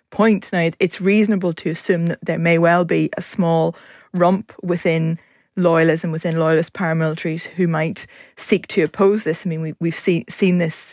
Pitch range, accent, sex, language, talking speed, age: 160-185 Hz, British, female, English, 175 wpm, 20-39